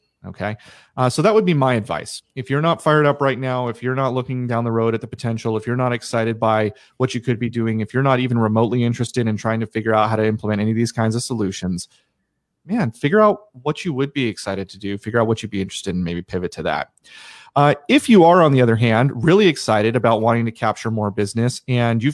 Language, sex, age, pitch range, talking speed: English, male, 30-49, 115-145 Hz, 255 wpm